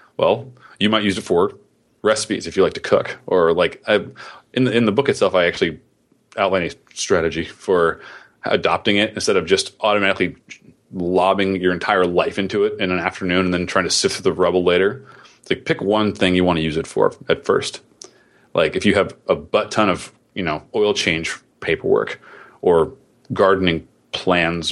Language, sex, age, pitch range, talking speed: English, male, 30-49, 90-125 Hz, 195 wpm